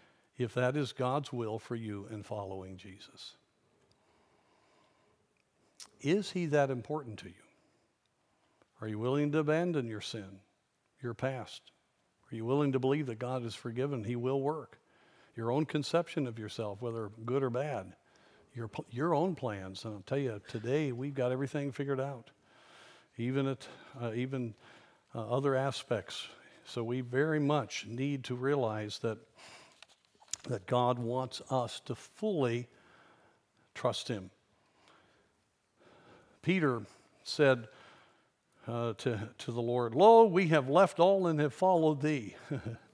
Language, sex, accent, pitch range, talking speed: English, male, American, 115-145 Hz, 140 wpm